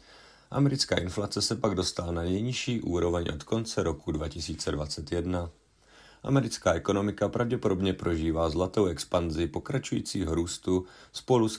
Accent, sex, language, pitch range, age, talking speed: native, male, Czech, 85-105 Hz, 40-59, 115 wpm